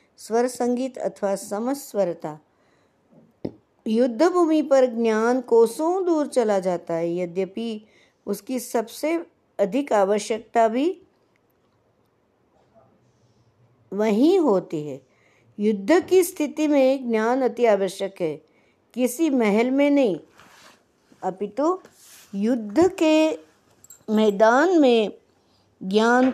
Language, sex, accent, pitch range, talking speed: Hindi, female, native, 200-260 Hz, 90 wpm